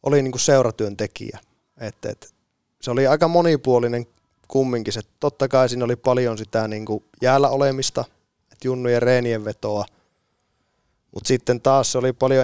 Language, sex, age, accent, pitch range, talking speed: Finnish, male, 20-39, native, 100-120 Hz, 150 wpm